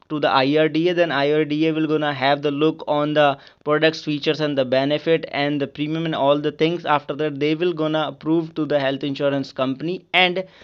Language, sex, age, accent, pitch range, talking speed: English, male, 20-39, Indian, 145-170 Hz, 205 wpm